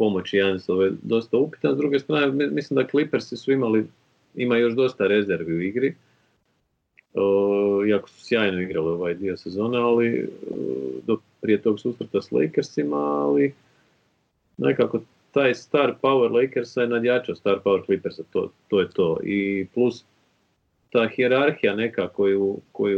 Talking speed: 145 wpm